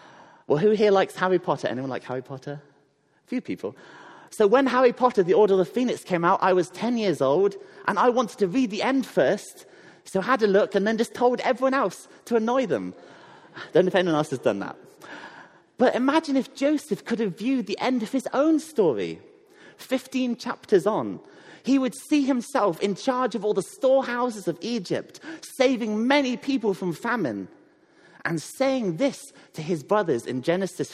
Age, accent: 30-49, British